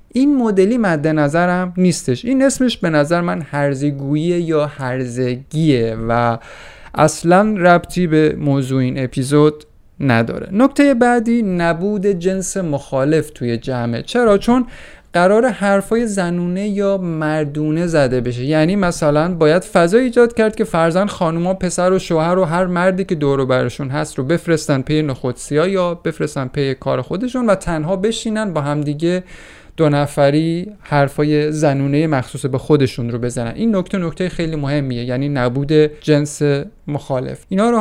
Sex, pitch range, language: male, 135-185 Hz, Persian